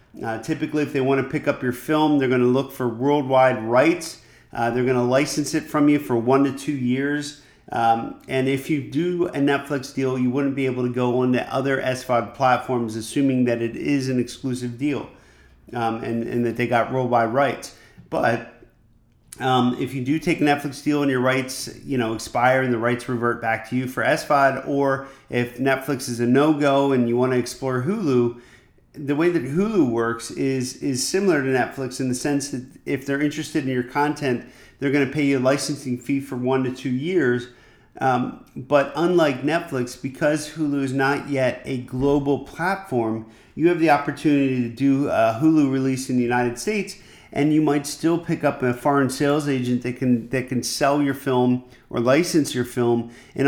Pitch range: 125-145 Hz